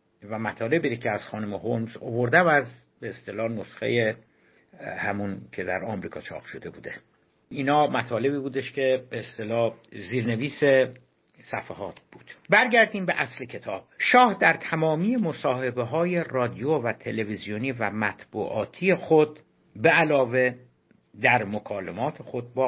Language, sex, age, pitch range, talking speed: Persian, male, 60-79, 105-140 Hz, 125 wpm